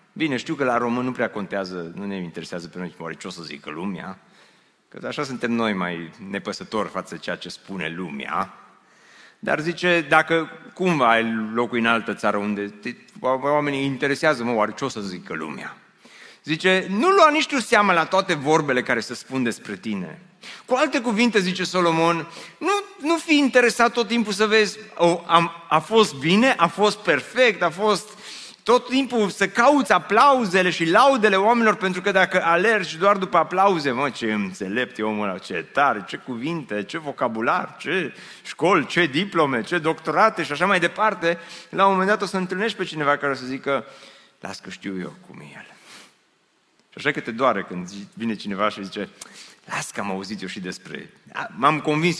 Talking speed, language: 190 wpm, Romanian